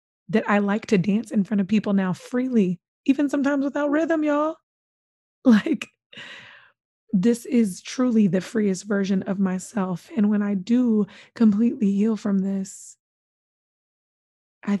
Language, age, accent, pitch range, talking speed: English, 20-39, American, 185-215 Hz, 140 wpm